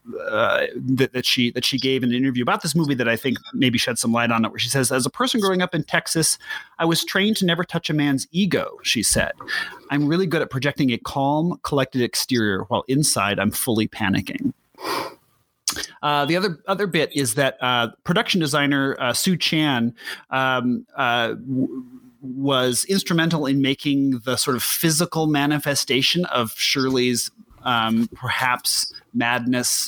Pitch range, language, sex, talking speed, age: 120-145 Hz, English, male, 170 wpm, 30-49